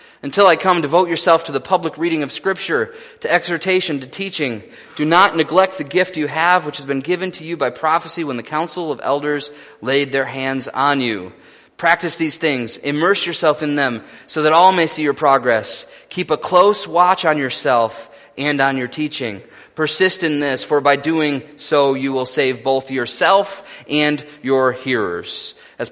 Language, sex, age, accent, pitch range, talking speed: English, male, 30-49, American, 125-160 Hz, 185 wpm